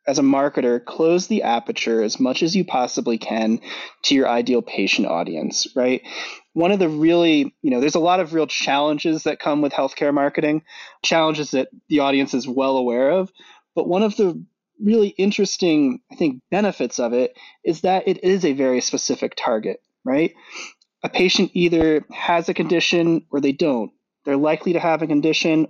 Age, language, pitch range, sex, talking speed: 20-39, English, 130-190 Hz, male, 180 wpm